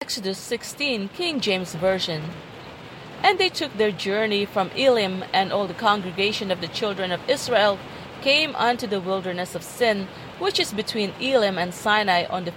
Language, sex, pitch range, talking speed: English, female, 175-220 Hz, 165 wpm